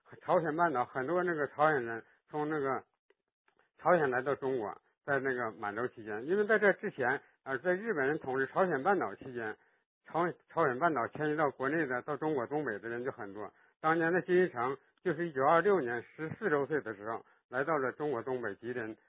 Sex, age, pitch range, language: male, 60-79, 135-175 Hz, Chinese